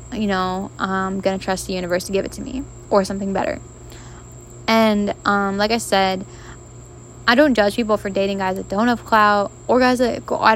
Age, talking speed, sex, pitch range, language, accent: 10-29, 205 wpm, female, 190-210 Hz, English, American